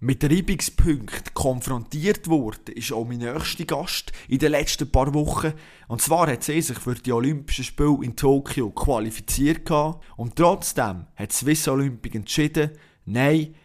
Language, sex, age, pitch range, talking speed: German, male, 20-39, 125-155 Hz, 155 wpm